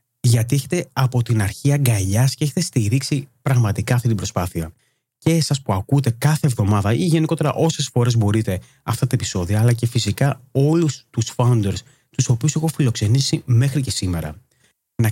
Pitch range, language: 110-145 Hz, Greek